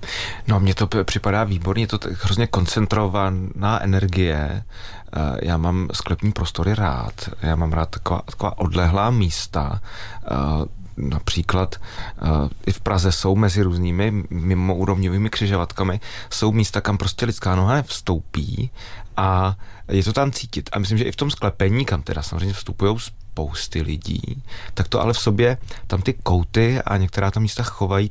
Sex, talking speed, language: male, 145 wpm, Czech